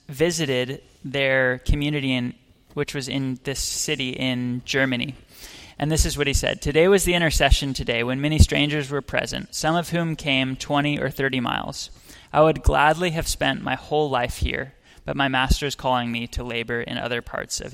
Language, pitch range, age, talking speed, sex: English, 125-155 Hz, 20-39, 185 wpm, male